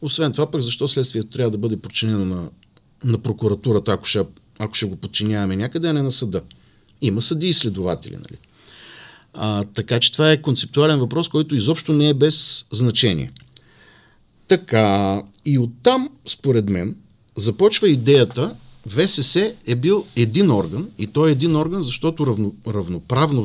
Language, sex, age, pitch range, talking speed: Bulgarian, male, 50-69, 105-150 Hz, 155 wpm